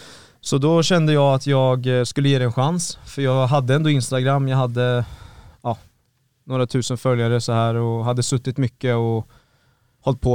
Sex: male